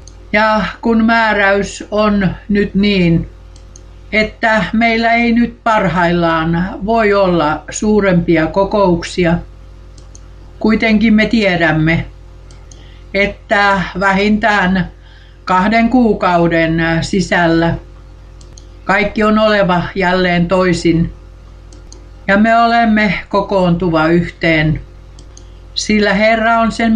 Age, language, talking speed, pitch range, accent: 60-79, Finnish, 80 wpm, 150-210 Hz, native